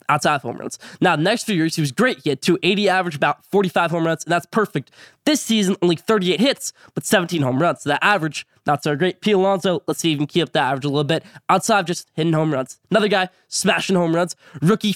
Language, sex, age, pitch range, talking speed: English, male, 10-29, 155-195 Hz, 255 wpm